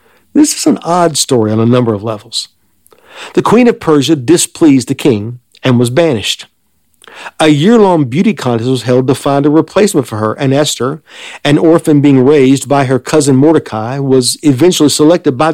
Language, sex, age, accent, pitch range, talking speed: English, male, 50-69, American, 125-165 Hz, 180 wpm